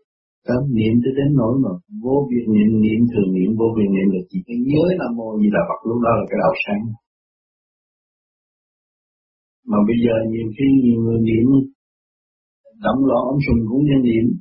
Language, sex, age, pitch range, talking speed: Vietnamese, male, 60-79, 110-140 Hz, 215 wpm